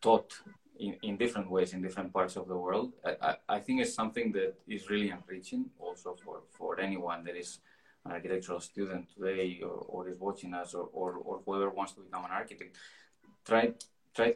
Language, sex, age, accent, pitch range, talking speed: Turkish, male, 20-39, Spanish, 90-100 Hz, 190 wpm